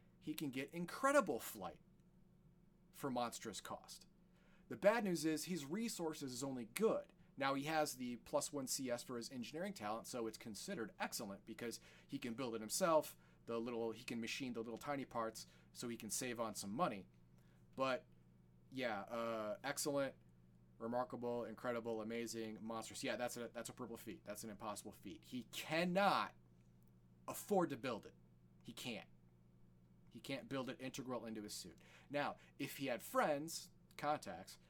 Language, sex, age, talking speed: English, male, 30-49, 165 wpm